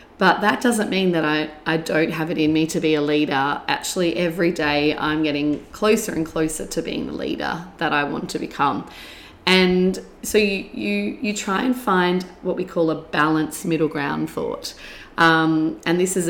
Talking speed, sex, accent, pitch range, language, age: 190 wpm, female, Australian, 160-195 Hz, English, 30-49